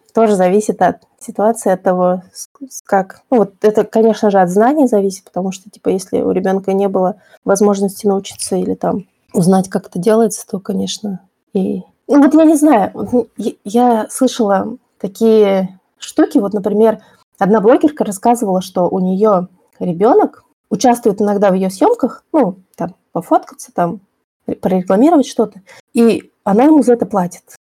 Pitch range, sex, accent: 190-245 Hz, female, native